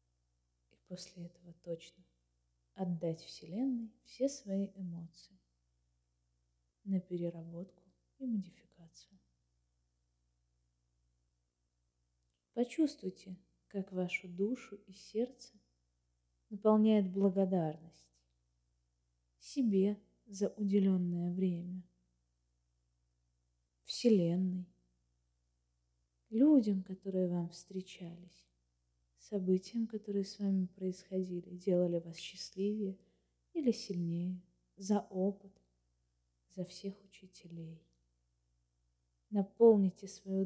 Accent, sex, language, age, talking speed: native, female, Russian, 20-39, 70 wpm